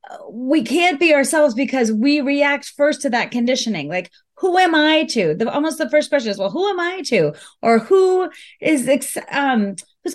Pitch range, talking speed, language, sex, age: 230-315 Hz, 190 wpm, English, female, 30-49